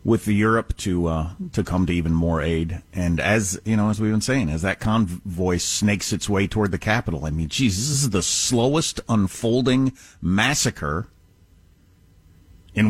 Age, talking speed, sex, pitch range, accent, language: 50-69, 175 wpm, male, 95-130 Hz, American, English